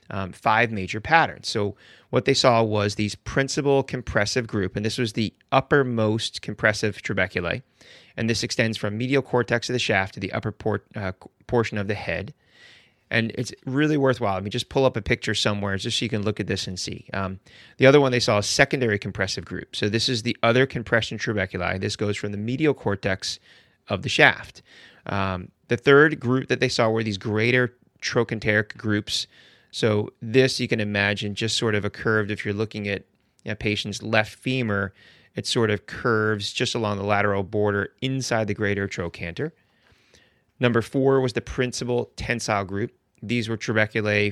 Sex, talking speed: male, 185 wpm